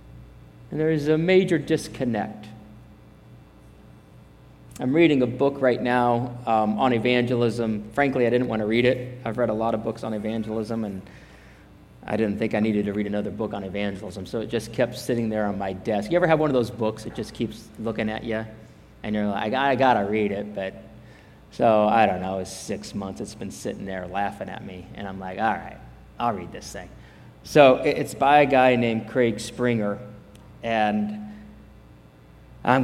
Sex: male